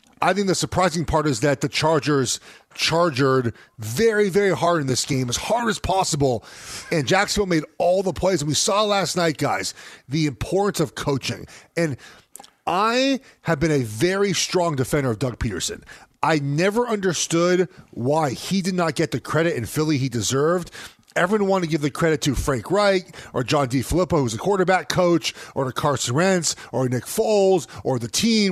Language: English